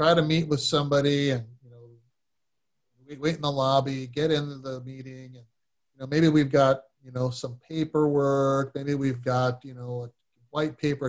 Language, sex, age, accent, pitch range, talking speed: English, male, 40-59, American, 125-150 Hz, 185 wpm